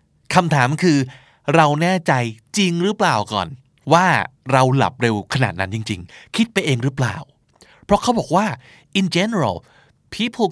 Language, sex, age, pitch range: Thai, male, 20-39, 120-165 Hz